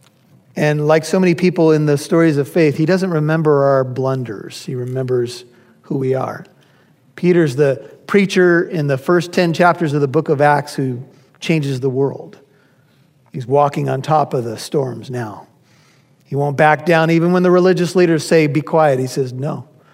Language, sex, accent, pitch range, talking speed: English, male, American, 140-170 Hz, 180 wpm